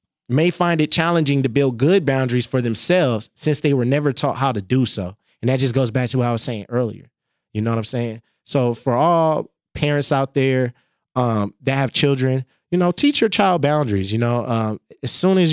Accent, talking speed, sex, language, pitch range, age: American, 220 wpm, male, English, 120-150 Hz, 20-39